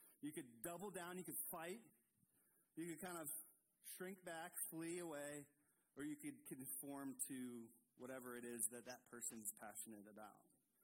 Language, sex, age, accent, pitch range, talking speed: English, male, 30-49, American, 135-180 Hz, 155 wpm